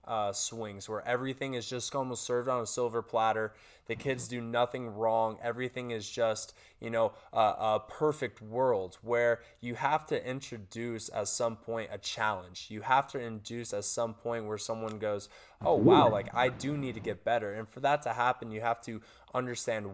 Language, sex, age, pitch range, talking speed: English, male, 20-39, 110-125 Hz, 190 wpm